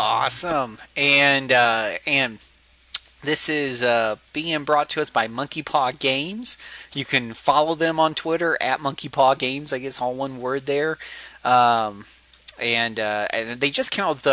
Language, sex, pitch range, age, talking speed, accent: English, male, 125-160 Hz, 20-39, 170 wpm, American